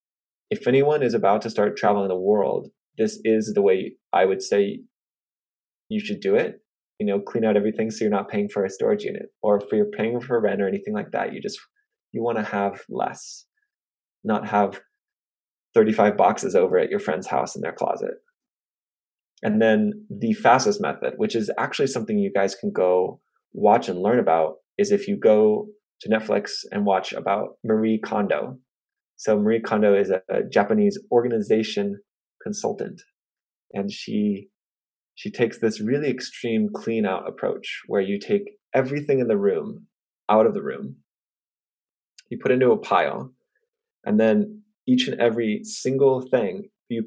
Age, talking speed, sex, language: 20-39, 170 wpm, male, English